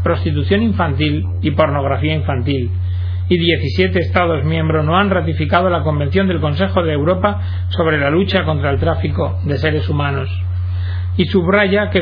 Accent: Spanish